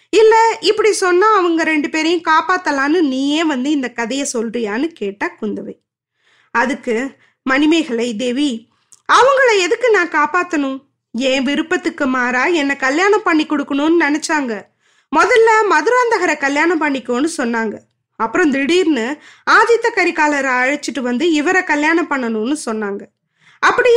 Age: 20-39